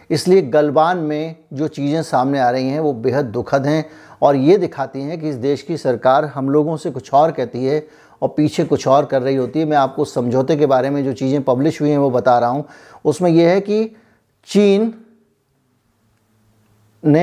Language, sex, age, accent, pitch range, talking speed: Hindi, male, 50-69, native, 135-170 Hz, 200 wpm